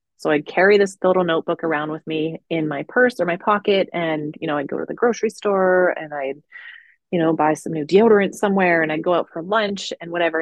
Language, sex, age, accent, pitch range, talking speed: English, female, 30-49, American, 150-190 Hz, 235 wpm